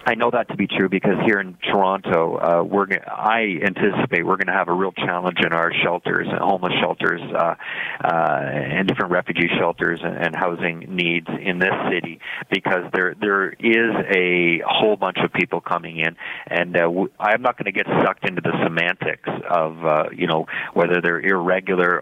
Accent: American